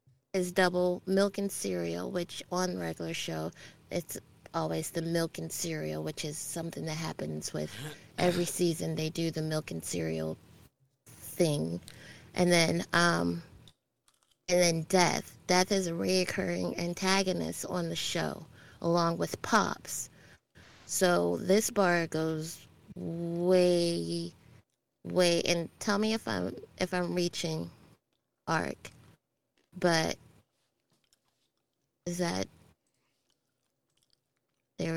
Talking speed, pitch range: 115 wpm, 135-180 Hz